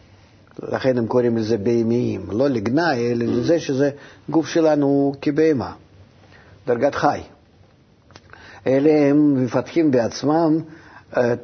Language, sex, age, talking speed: Hebrew, male, 50-69, 105 wpm